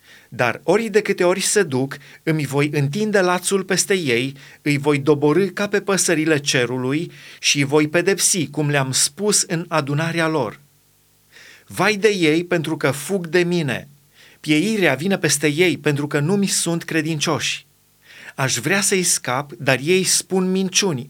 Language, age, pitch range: Romanian, 30-49, 145-180 Hz